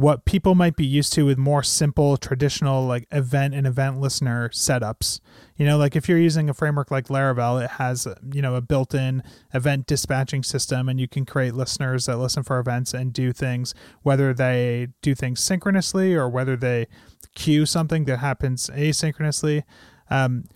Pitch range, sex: 125-150 Hz, male